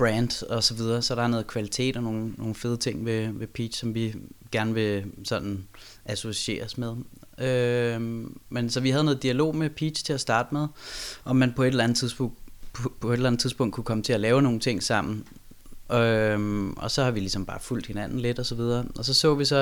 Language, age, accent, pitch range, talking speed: Danish, 20-39, native, 110-130 Hz, 230 wpm